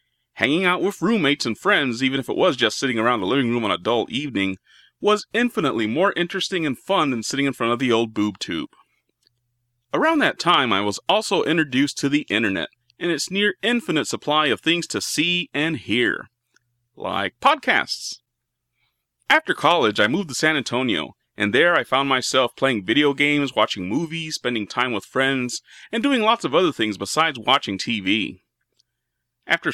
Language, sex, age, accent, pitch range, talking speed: English, male, 30-49, American, 115-165 Hz, 180 wpm